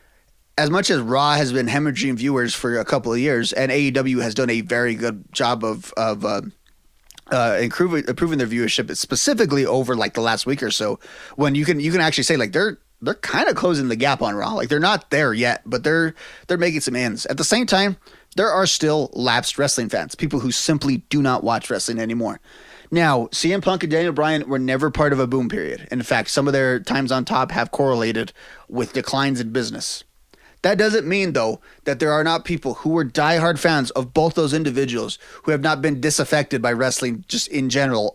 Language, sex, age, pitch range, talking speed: English, male, 30-49, 125-155 Hz, 215 wpm